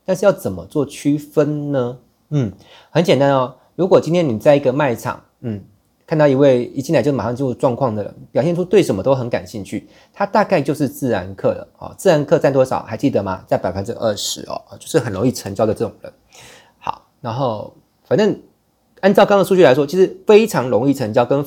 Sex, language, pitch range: male, Chinese, 120-160 Hz